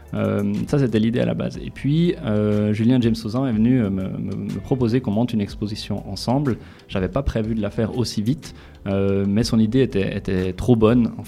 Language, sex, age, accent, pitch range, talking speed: French, male, 20-39, French, 100-120 Hz, 220 wpm